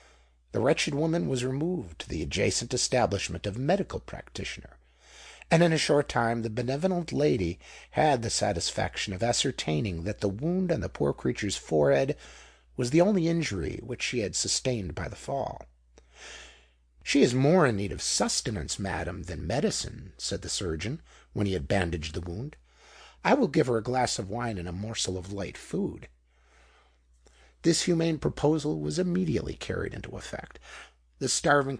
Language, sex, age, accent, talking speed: English, male, 50-69, American, 165 wpm